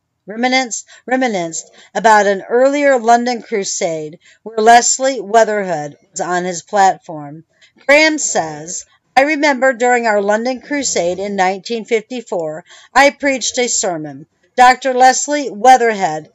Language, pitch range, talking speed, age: English, 185-255 Hz, 115 wpm, 60-79